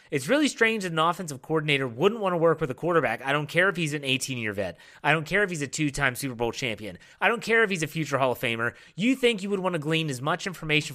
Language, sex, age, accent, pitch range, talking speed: English, male, 30-49, American, 140-215 Hz, 285 wpm